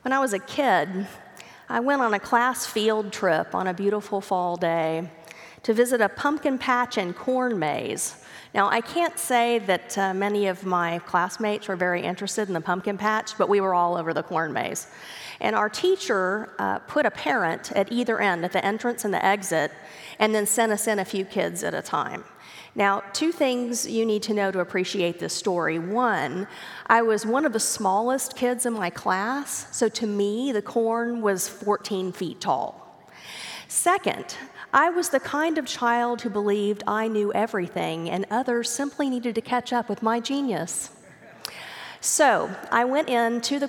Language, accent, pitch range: English, American, 185-240 Hz